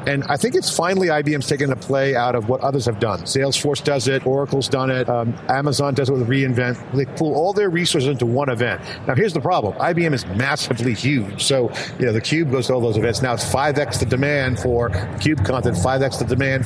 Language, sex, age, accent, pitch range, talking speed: English, male, 50-69, American, 120-145 Hz, 230 wpm